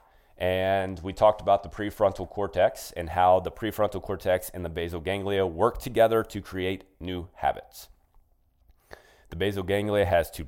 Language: English